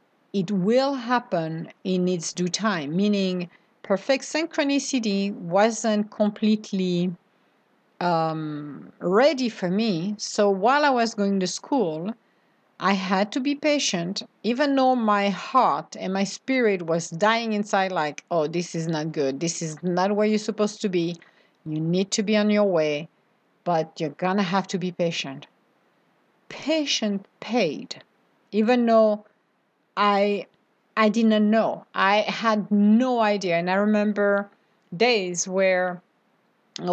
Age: 50-69